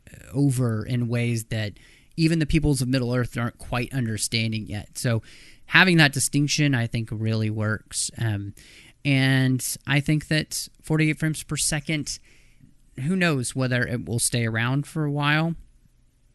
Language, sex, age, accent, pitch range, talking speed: English, male, 30-49, American, 115-140 Hz, 145 wpm